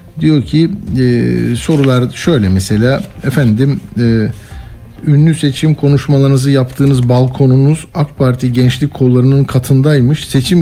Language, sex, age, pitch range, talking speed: Turkish, male, 50-69, 120-160 Hz, 105 wpm